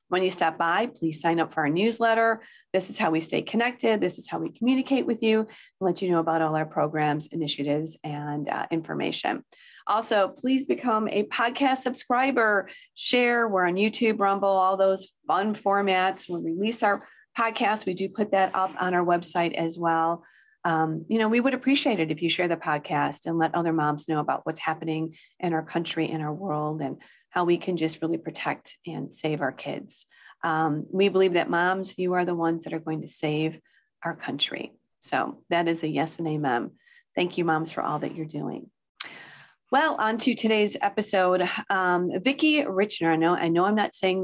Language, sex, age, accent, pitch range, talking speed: English, female, 40-59, American, 160-220 Hz, 200 wpm